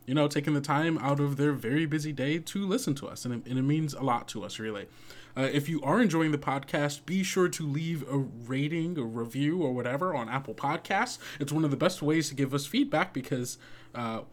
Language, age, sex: English, 20-39, male